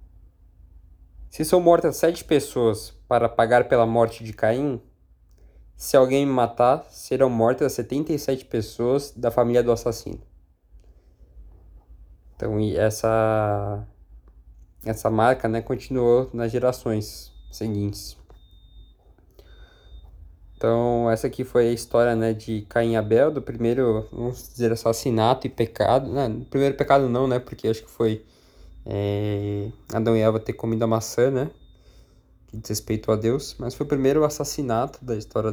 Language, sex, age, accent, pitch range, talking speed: Portuguese, male, 20-39, Brazilian, 105-125 Hz, 130 wpm